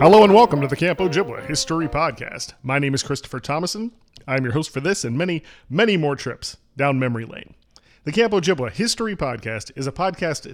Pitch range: 120-155 Hz